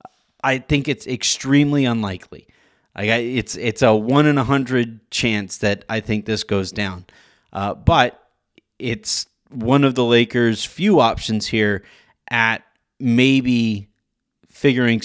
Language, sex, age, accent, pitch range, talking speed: English, male, 30-49, American, 110-140 Hz, 130 wpm